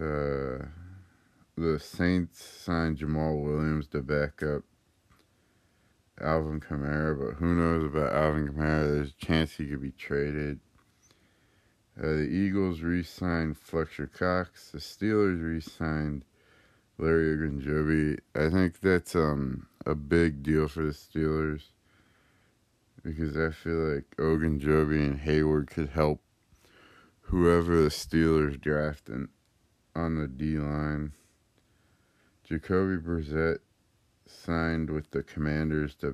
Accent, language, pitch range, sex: American, English, 75-90 Hz, male